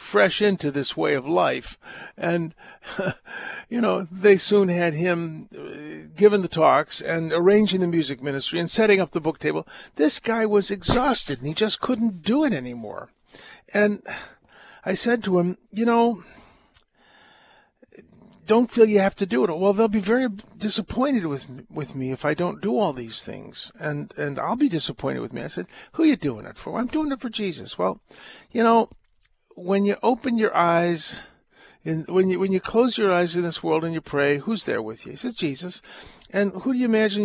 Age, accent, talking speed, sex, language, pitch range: 60-79, American, 195 wpm, male, English, 165-220 Hz